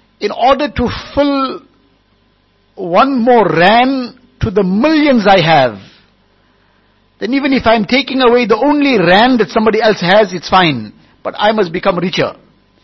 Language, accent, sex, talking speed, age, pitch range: English, Indian, male, 155 wpm, 60-79, 185-245 Hz